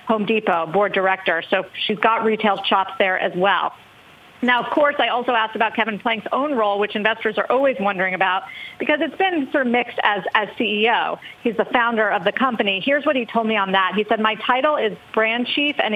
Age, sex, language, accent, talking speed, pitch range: 40-59, female, English, American, 220 wpm, 195-245 Hz